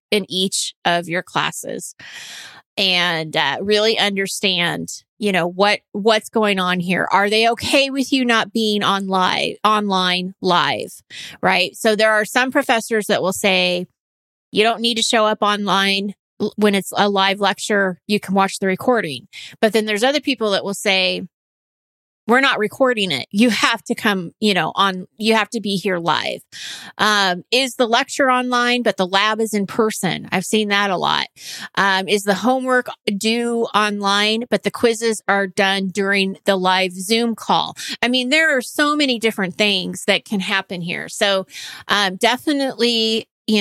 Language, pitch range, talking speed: English, 195-230 Hz, 170 wpm